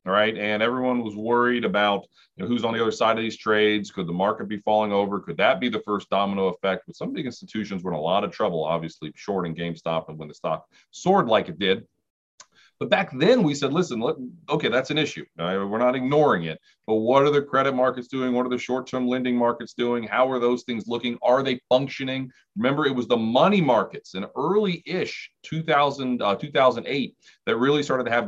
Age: 40-59